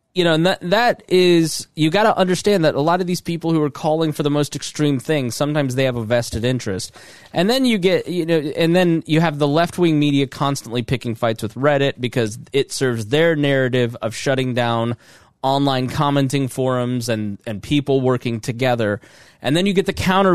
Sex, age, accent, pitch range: male, 20-39, American, 115-145 Hz